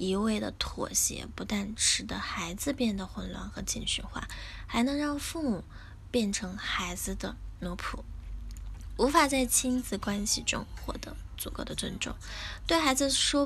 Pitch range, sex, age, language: 180-250 Hz, female, 10-29, Chinese